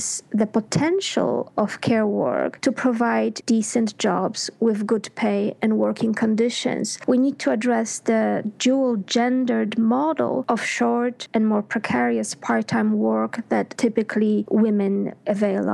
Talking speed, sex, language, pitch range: 130 wpm, female, English, 205-245 Hz